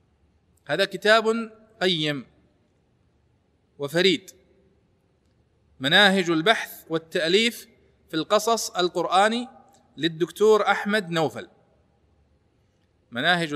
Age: 40-59